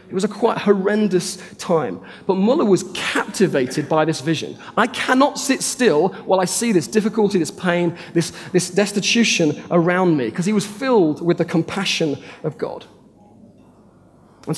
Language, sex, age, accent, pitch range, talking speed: English, male, 30-49, British, 175-225 Hz, 160 wpm